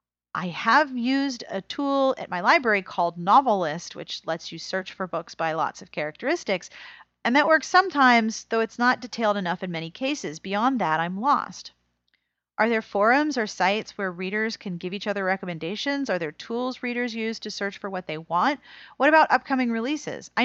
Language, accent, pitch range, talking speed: English, American, 180-255 Hz, 190 wpm